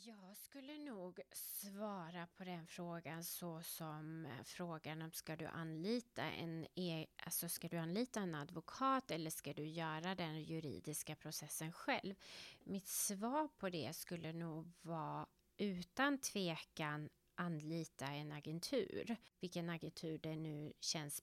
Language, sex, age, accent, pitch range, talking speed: Swedish, female, 30-49, native, 155-190 Hz, 135 wpm